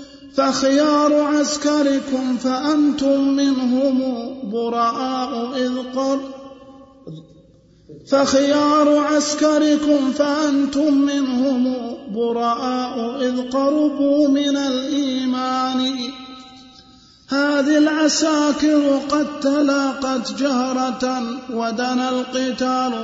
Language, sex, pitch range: Arabic, male, 255-280 Hz